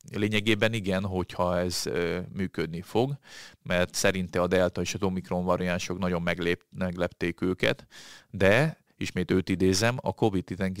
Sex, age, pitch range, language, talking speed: male, 30-49, 90-100 Hz, Hungarian, 130 wpm